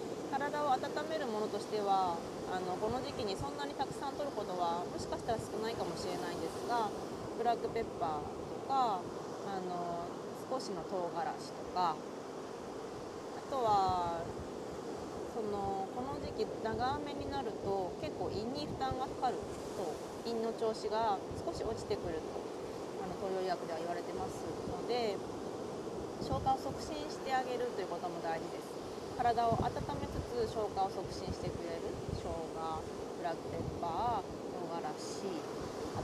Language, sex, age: Japanese, female, 30-49